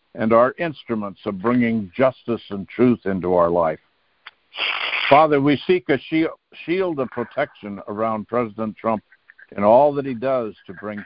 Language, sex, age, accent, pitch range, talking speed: English, male, 60-79, American, 110-130 Hz, 150 wpm